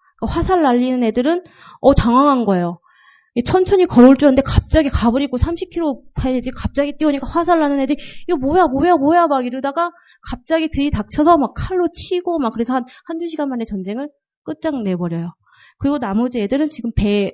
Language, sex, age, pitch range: Korean, female, 30-49, 210-295 Hz